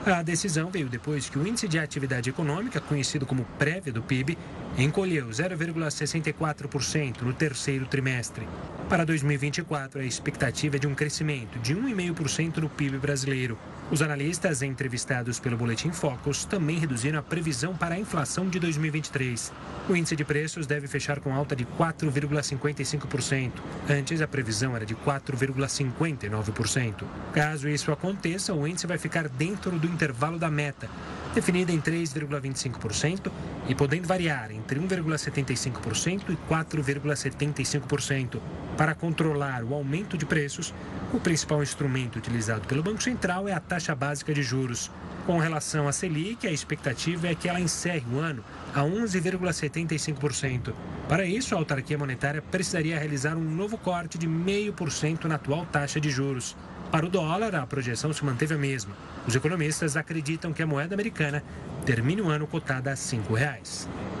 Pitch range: 135-165 Hz